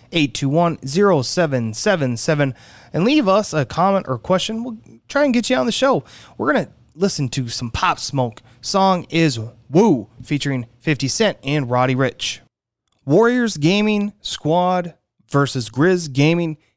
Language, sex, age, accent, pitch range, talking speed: English, male, 30-49, American, 125-190 Hz, 135 wpm